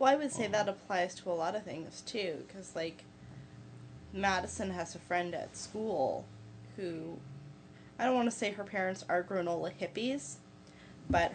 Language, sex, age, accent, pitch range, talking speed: English, female, 10-29, American, 165-205 Hz, 170 wpm